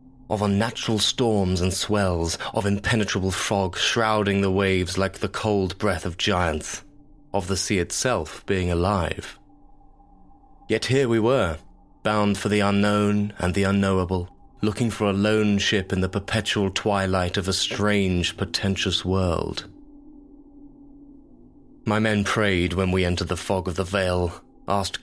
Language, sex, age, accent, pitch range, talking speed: English, male, 30-49, British, 95-115 Hz, 145 wpm